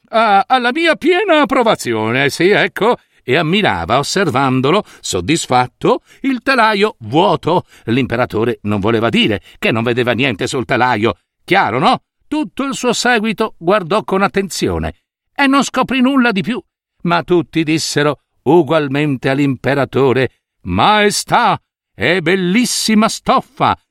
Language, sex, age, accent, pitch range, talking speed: Italian, male, 60-79, native, 135-225 Hz, 120 wpm